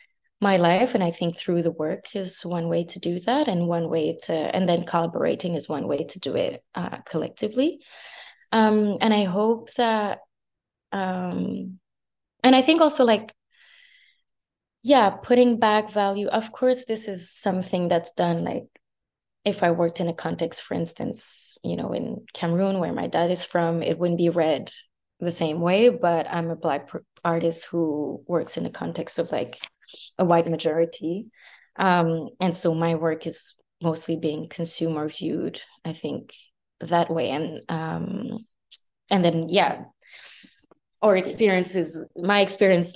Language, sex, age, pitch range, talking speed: English, female, 20-39, 165-210 Hz, 160 wpm